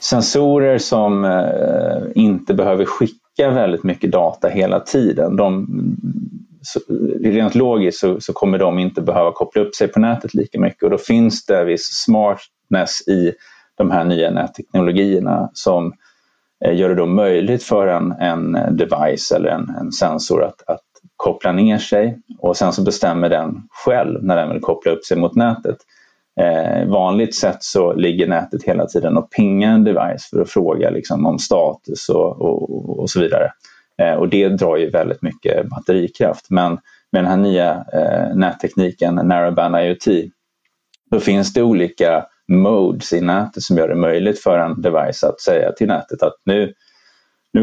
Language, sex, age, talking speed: Swedish, male, 30-49, 160 wpm